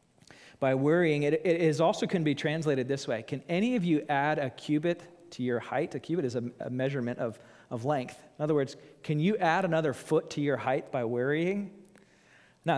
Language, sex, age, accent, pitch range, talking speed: English, male, 30-49, American, 140-200 Hz, 200 wpm